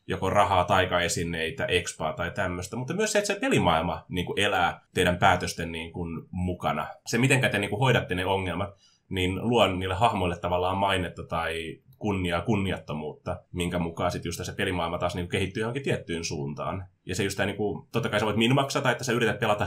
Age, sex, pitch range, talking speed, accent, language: 20-39, male, 90-120 Hz, 180 wpm, native, Finnish